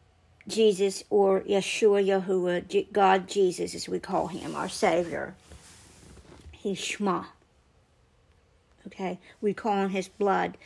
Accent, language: American, English